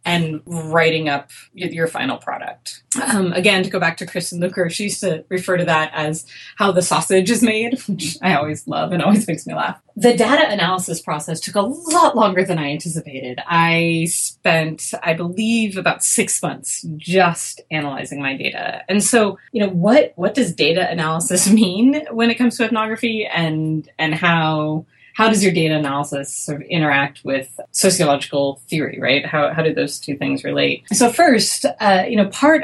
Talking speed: 185 wpm